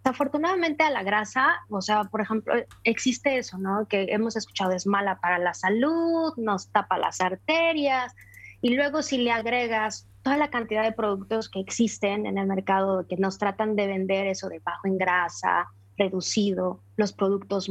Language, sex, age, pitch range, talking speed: Spanish, female, 20-39, 195-240 Hz, 175 wpm